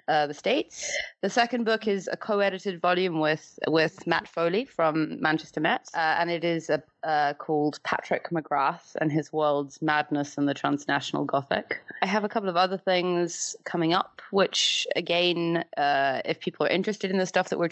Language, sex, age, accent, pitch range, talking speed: English, female, 20-39, British, 155-185 Hz, 185 wpm